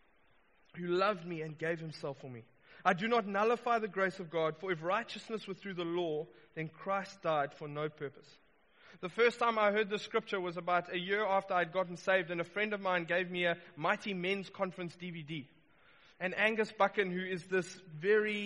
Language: English